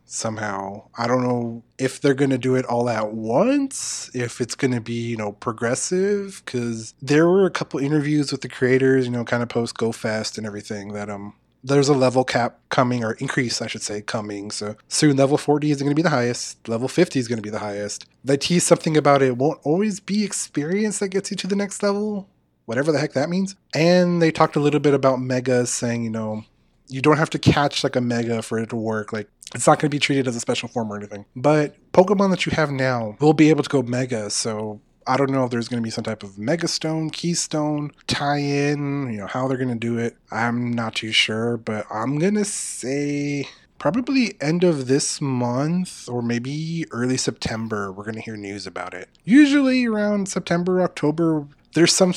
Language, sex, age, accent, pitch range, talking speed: English, male, 20-39, American, 115-155 Hz, 225 wpm